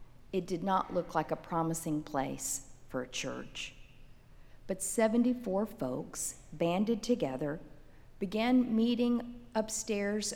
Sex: female